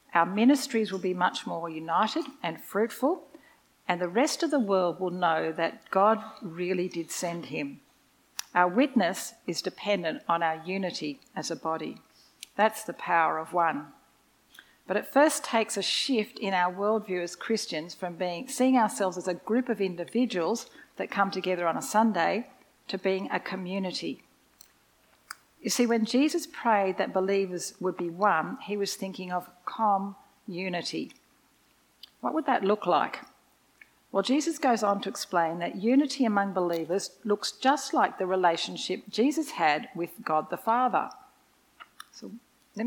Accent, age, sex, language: Australian, 50-69, female, English